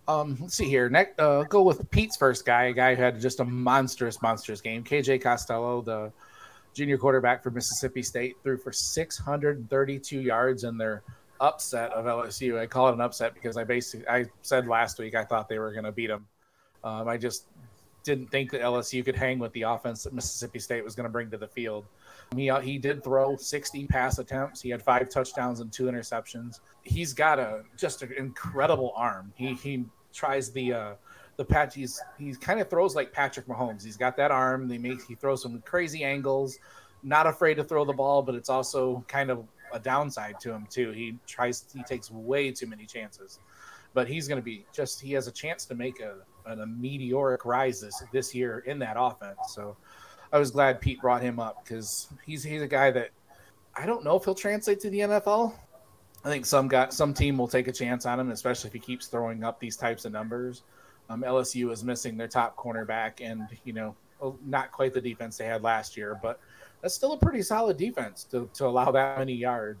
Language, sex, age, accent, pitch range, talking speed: English, male, 30-49, American, 115-135 Hz, 215 wpm